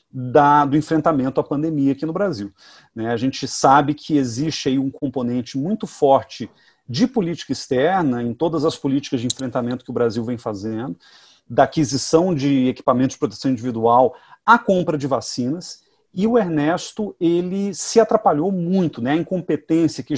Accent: Brazilian